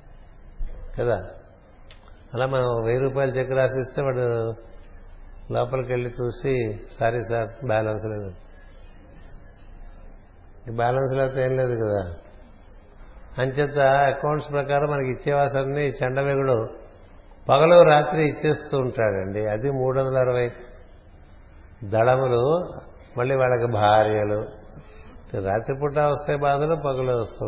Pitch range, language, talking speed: 100-130 Hz, Telugu, 95 wpm